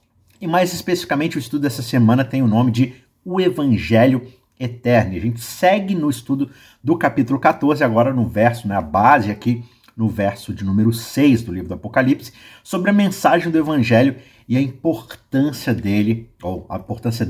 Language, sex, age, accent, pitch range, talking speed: Portuguese, male, 50-69, Brazilian, 110-135 Hz, 175 wpm